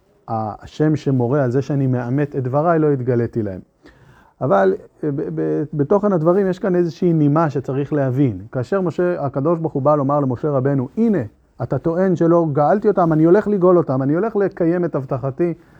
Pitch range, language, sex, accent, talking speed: 135-180 Hz, Hebrew, male, native, 175 wpm